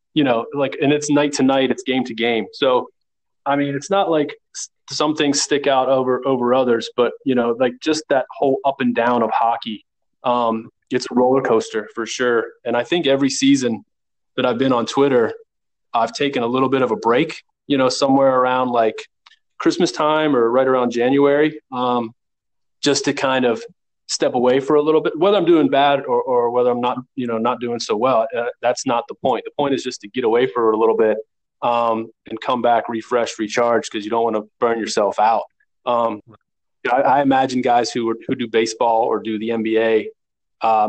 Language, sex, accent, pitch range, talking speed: English, male, American, 115-140 Hz, 210 wpm